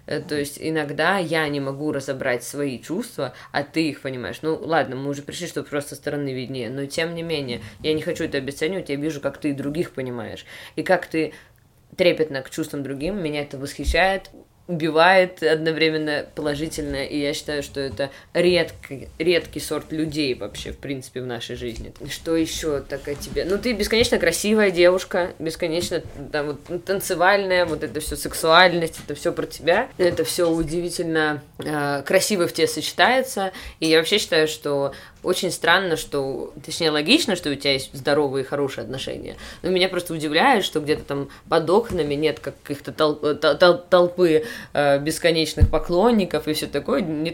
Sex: female